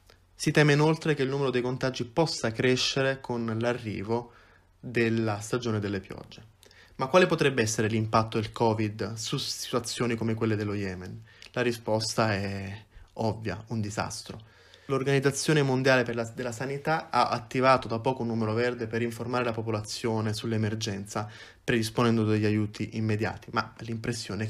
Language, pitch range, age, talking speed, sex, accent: Italian, 110-130 Hz, 20-39, 140 wpm, male, native